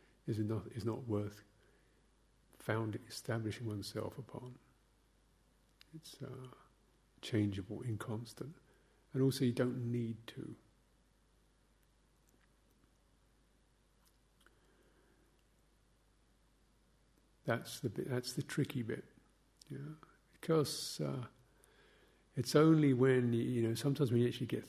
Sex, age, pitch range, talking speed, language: male, 50-69, 110-130 Hz, 95 wpm, English